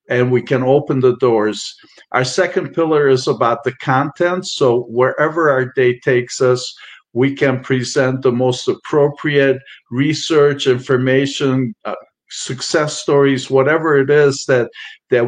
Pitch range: 125-140 Hz